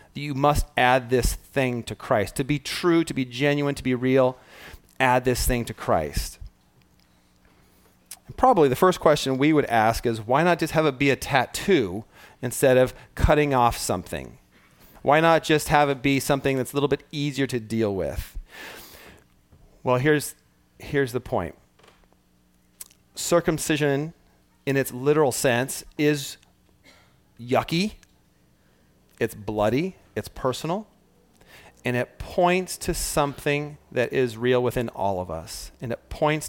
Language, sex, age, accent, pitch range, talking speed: English, male, 30-49, American, 115-145 Hz, 145 wpm